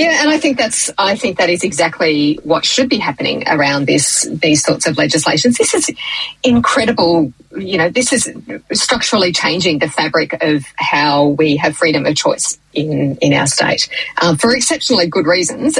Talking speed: 175 wpm